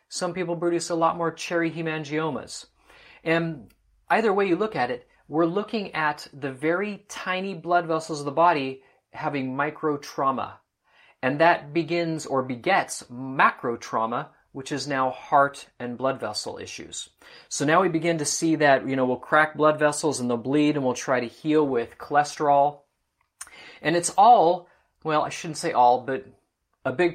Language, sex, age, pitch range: English, male, 30-49, 135-175 Hz